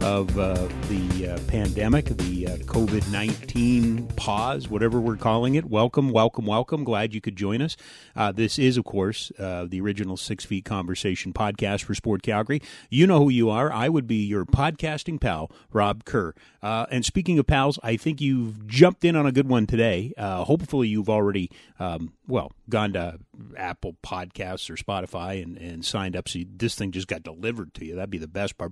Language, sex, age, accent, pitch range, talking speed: English, male, 30-49, American, 95-130 Hz, 195 wpm